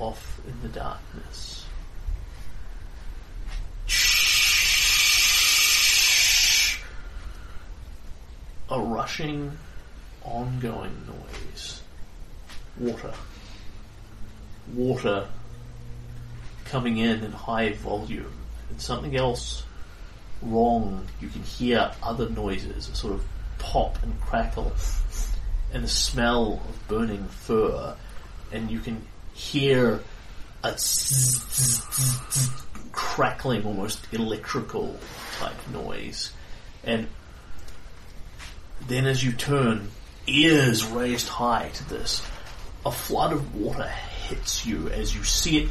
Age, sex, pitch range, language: 40-59, male, 85-120 Hz, English